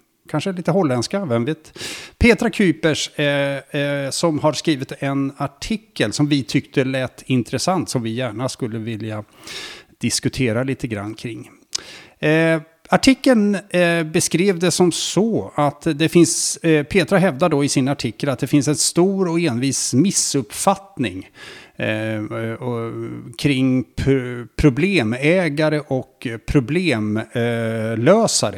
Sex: male